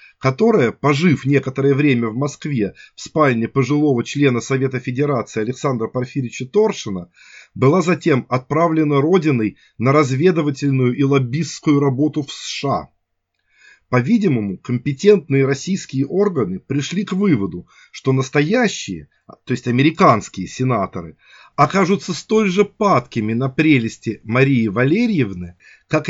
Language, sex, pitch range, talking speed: Russian, male, 130-160 Hz, 110 wpm